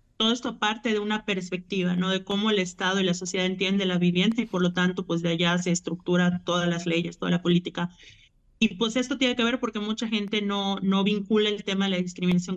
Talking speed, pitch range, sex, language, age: 235 wpm, 180-200 Hz, male, Spanish, 30-49